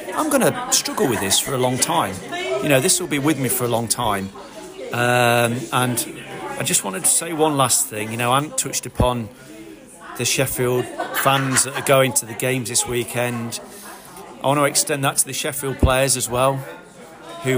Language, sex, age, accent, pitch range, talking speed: English, male, 40-59, British, 110-130 Hz, 205 wpm